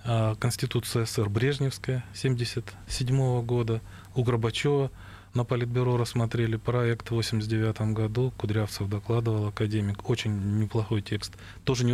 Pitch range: 100-130 Hz